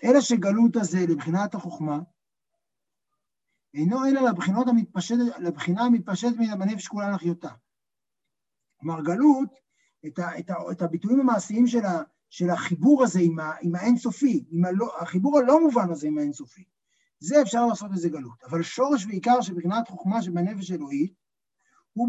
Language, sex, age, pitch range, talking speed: Hebrew, male, 60-79, 175-245 Hz, 140 wpm